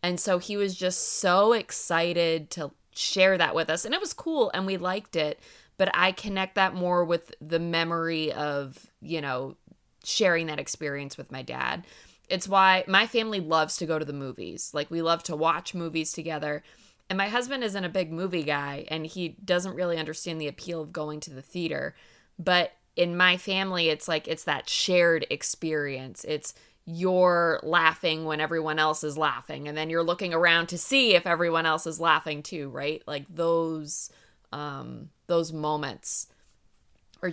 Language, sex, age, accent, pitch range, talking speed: English, female, 20-39, American, 155-180 Hz, 180 wpm